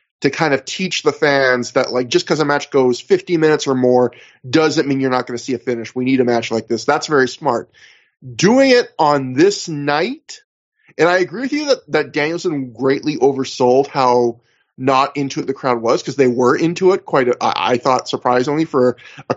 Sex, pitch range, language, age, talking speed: male, 125-165 Hz, English, 20-39, 215 wpm